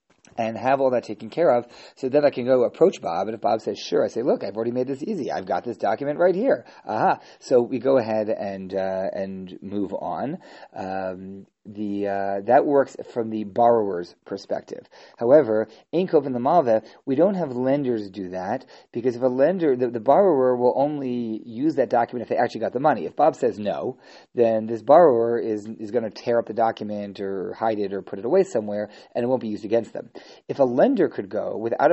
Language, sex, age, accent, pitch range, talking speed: English, male, 40-59, American, 105-130 Hz, 220 wpm